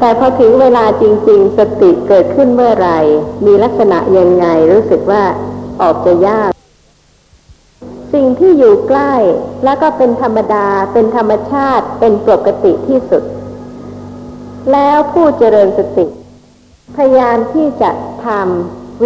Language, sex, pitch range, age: Thai, female, 200-275 Hz, 60-79